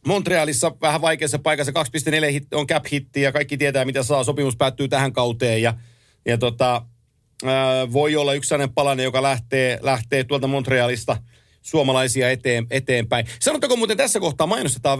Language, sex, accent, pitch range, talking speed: Finnish, male, native, 130-160 Hz, 150 wpm